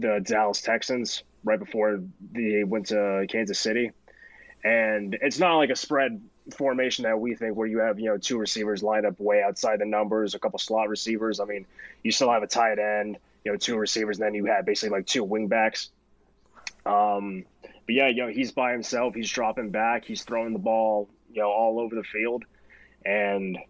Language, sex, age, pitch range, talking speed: English, male, 20-39, 100-110 Hz, 200 wpm